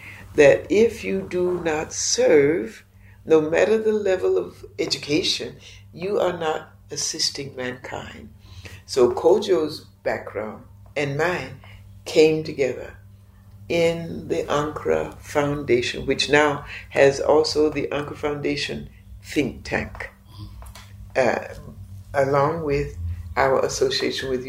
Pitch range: 100-155 Hz